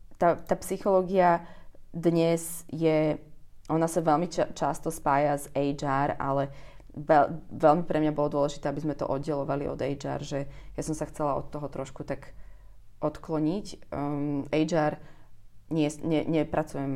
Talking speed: 130 wpm